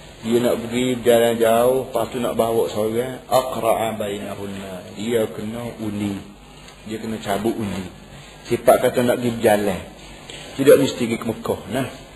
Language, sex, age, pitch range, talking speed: Malay, male, 40-59, 105-120 Hz, 135 wpm